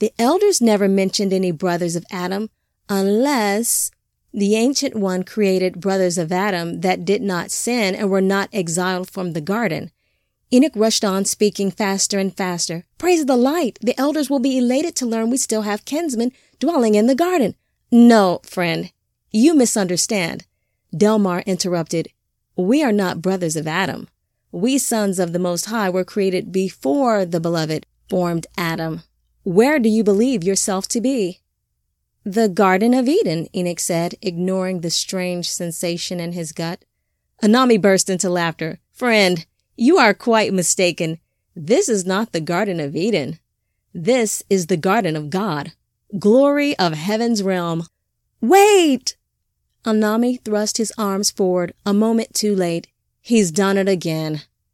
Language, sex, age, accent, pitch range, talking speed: English, female, 30-49, American, 180-225 Hz, 150 wpm